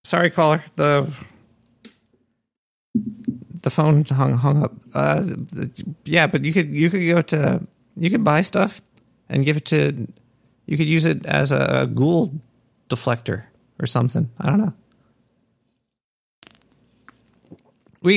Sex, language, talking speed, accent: male, English, 130 wpm, American